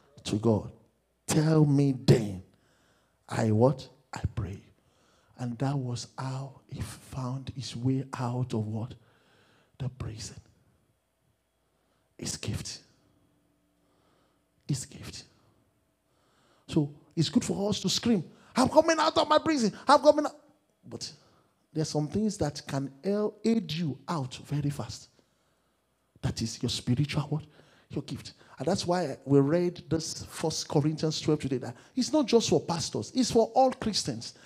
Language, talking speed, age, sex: English, 140 wpm, 50-69, male